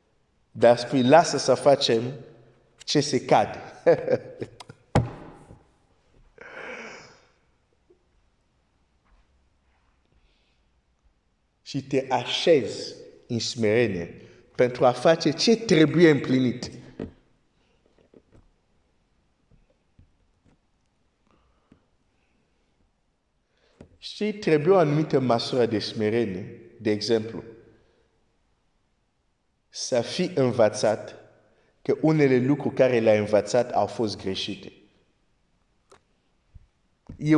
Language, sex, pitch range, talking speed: Romanian, male, 115-165 Hz, 65 wpm